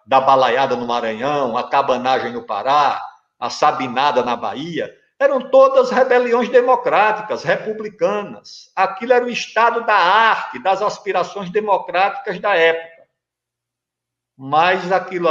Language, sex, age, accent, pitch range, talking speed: Portuguese, male, 60-79, Brazilian, 170-250 Hz, 120 wpm